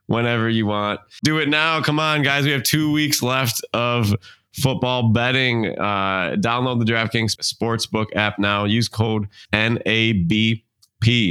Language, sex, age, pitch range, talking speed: English, male, 20-39, 95-115 Hz, 145 wpm